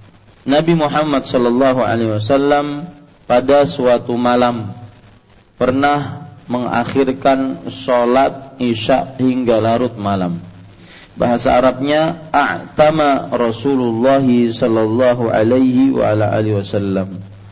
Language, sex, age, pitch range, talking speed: Malay, male, 40-59, 115-145 Hz, 80 wpm